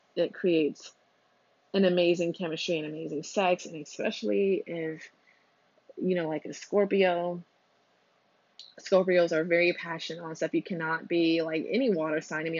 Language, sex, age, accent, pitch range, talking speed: English, female, 20-39, American, 165-195 Hz, 150 wpm